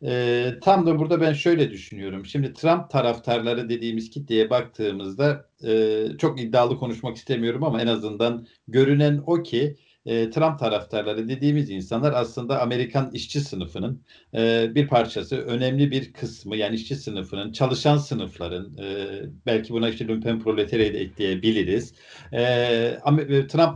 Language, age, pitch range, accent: Turkish, 50-69, 110-145 Hz, native